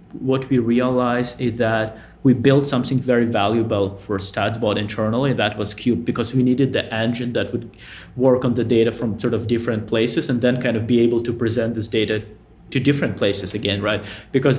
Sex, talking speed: male, 200 wpm